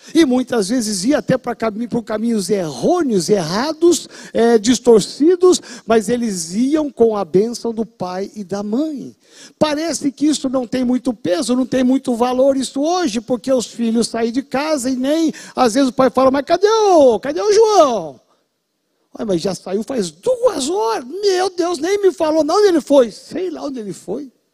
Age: 60-79